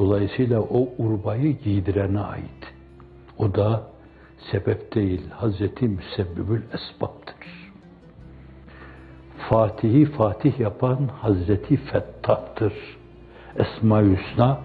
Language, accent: Turkish, native